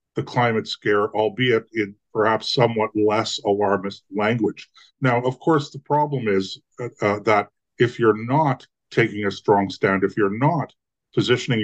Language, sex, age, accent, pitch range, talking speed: English, male, 50-69, American, 105-135 Hz, 155 wpm